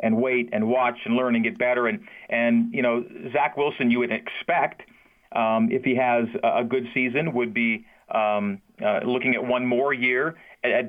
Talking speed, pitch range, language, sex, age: 200 wpm, 120-140 Hz, English, male, 40-59